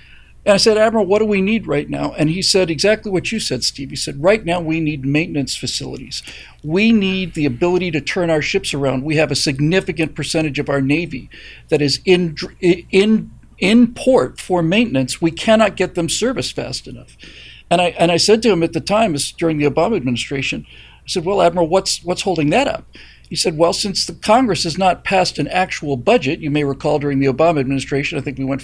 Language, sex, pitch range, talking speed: English, male, 145-190 Hz, 220 wpm